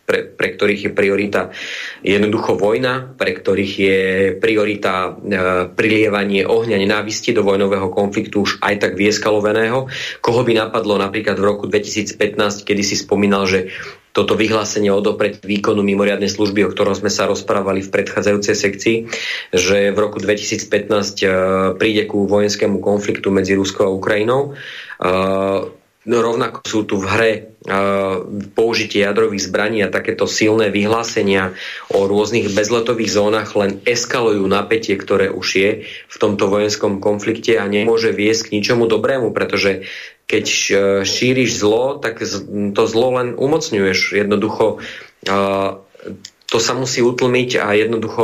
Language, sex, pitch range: Slovak, male, 100-110 Hz